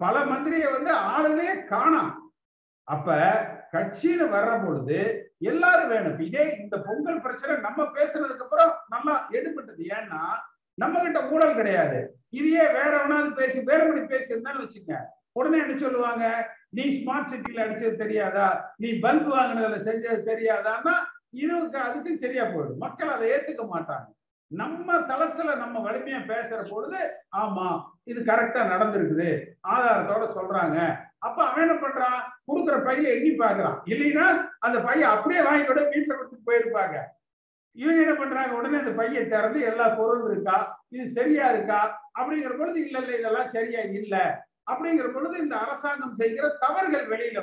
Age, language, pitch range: 50-69, Tamil, 230-315 Hz